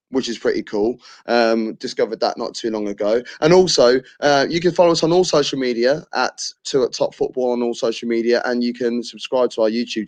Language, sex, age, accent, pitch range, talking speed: English, male, 20-39, British, 115-140 Hz, 220 wpm